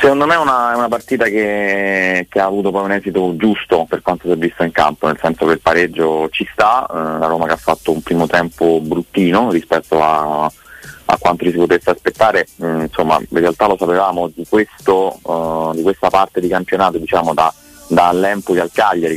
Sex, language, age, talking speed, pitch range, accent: male, Italian, 30-49, 205 wpm, 85-95 Hz, native